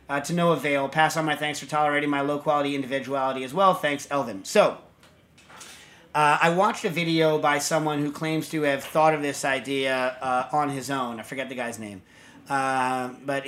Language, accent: English, American